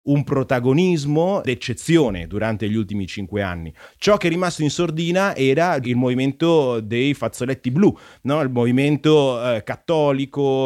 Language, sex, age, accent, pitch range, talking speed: Italian, male, 30-49, native, 115-145 Hz, 140 wpm